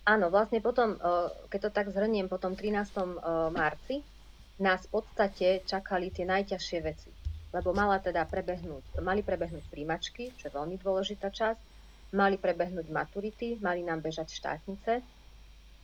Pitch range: 160-195 Hz